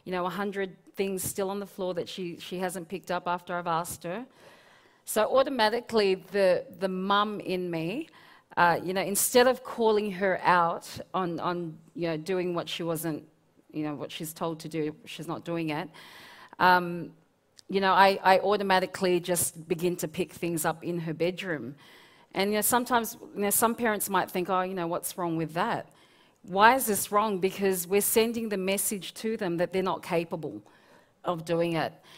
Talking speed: 190 wpm